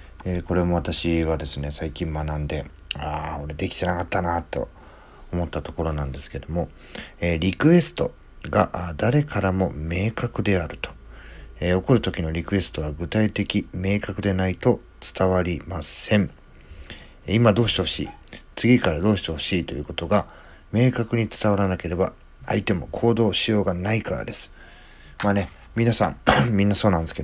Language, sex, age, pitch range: Japanese, male, 40-59, 80-100 Hz